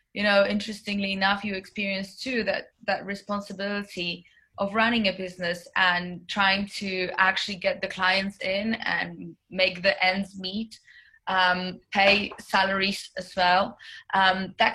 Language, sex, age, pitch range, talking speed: English, female, 20-39, 180-210 Hz, 140 wpm